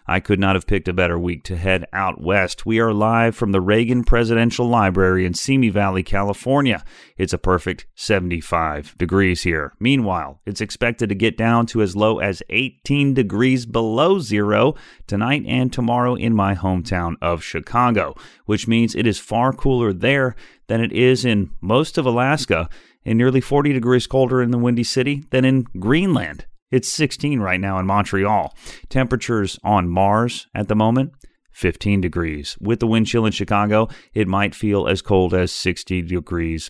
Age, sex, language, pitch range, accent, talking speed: 30-49, male, English, 95-125 Hz, American, 175 wpm